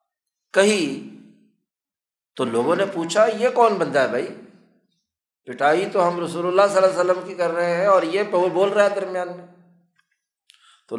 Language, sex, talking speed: Urdu, male, 170 wpm